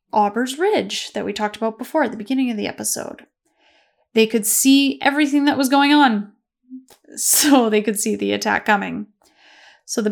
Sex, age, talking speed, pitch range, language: female, 10-29, 180 wpm, 215-270 Hz, English